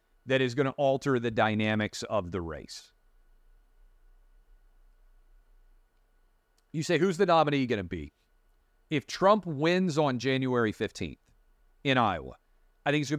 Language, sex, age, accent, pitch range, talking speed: English, male, 40-59, American, 110-145 Hz, 135 wpm